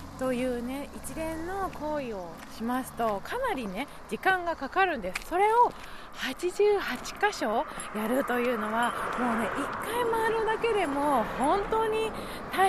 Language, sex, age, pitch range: Japanese, female, 20-39, 250-375 Hz